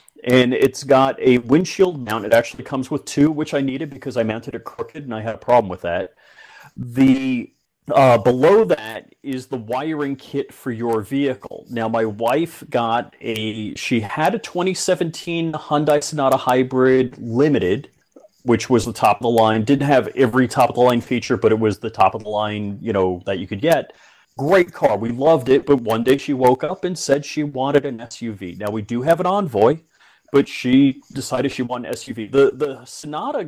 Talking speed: 200 wpm